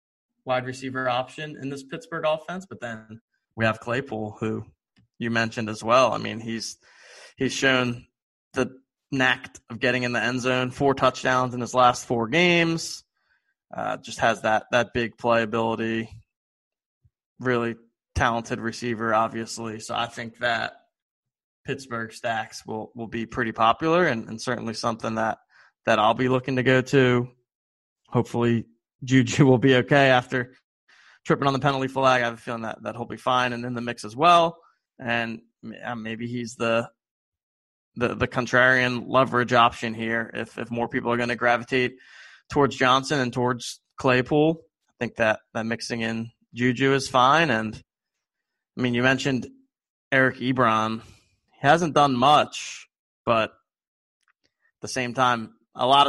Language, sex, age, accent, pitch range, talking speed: English, male, 20-39, American, 115-130 Hz, 155 wpm